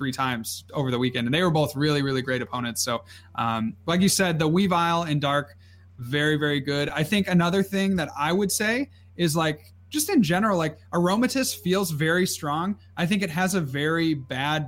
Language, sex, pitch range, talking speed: English, male, 130-170 Hz, 205 wpm